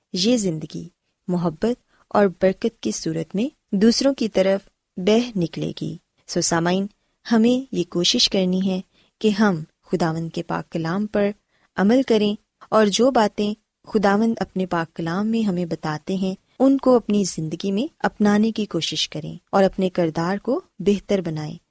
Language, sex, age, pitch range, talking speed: Urdu, female, 20-39, 170-225 Hz, 155 wpm